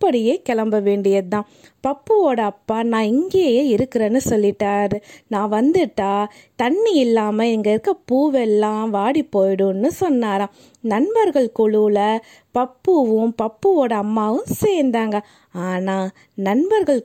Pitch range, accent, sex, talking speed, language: 215-290 Hz, native, female, 95 wpm, Tamil